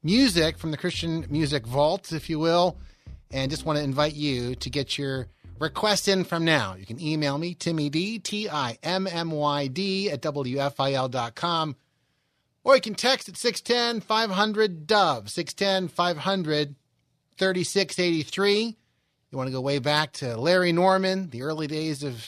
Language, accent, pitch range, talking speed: English, American, 130-180 Hz, 145 wpm